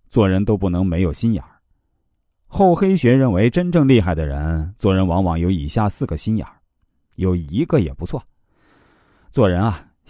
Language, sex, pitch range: Chinese, male, 85-120 Hz